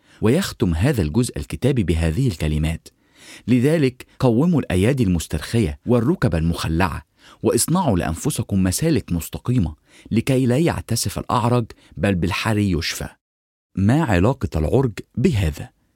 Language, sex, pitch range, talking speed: English, male, 85-125 Hz, 100 wpm